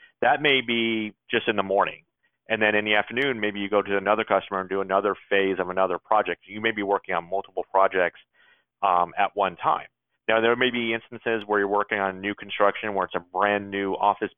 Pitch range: 95-110 Hz